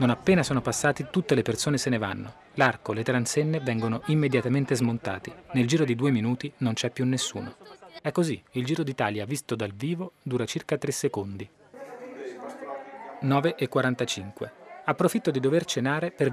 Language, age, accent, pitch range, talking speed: Italian, 30-49, native, 120-160 Hz, 160 wpm